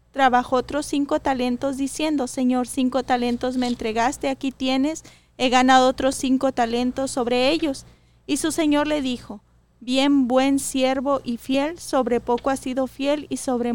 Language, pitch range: Spanish, 245-275 Hz